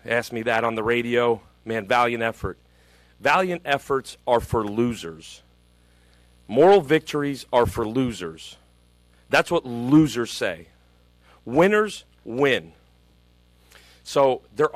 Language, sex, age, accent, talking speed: English, male, 40-59, American, 110 wpm